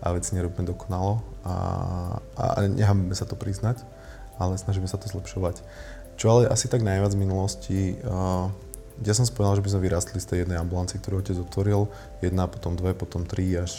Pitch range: 90-100 Hz